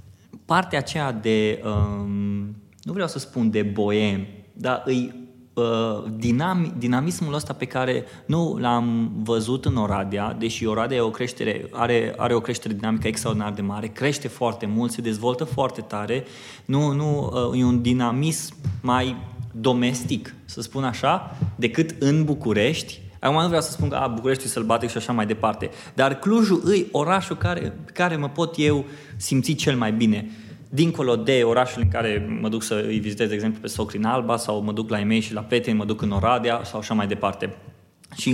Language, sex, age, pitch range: Romanian, male, 20-39, 110-140 Hz